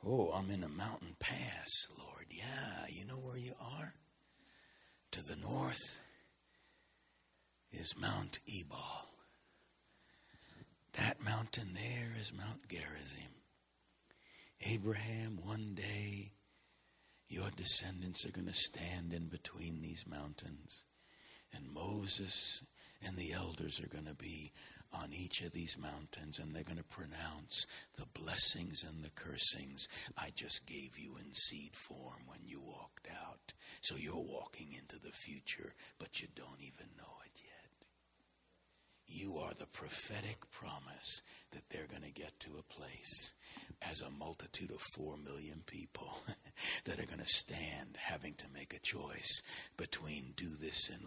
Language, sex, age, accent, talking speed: English, male, 60-79, American, 140 wpm